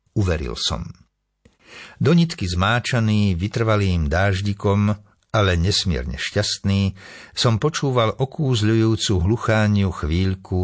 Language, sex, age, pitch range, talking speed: Slovak, male, 60-79, 85-110 Hz, 80 wpm